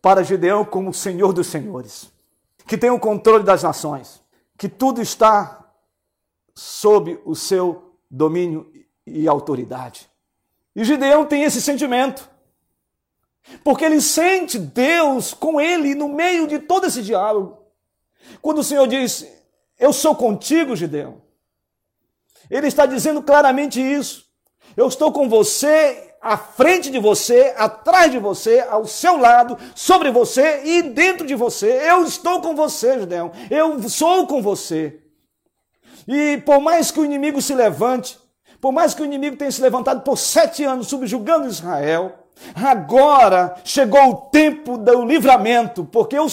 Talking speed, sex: 140 wpm, male